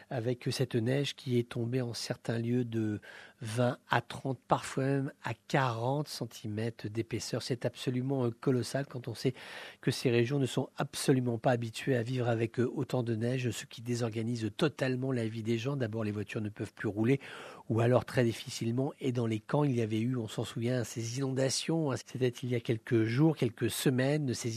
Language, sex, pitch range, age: English, male, 120-140 Hz, 50-69